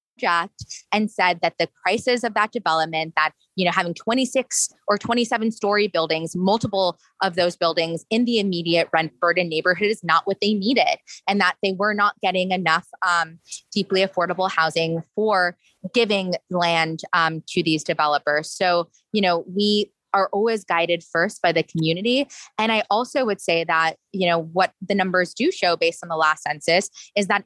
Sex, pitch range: female, 170-215 Hz